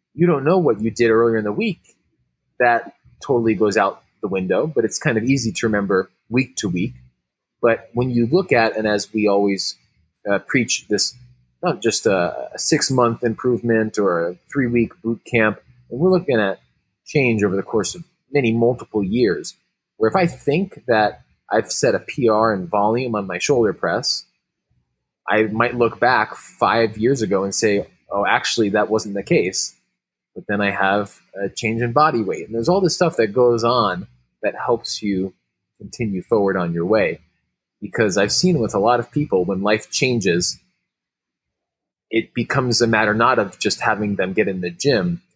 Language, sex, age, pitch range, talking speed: English, male, 20-39, 100-125 Hz, 185 wpm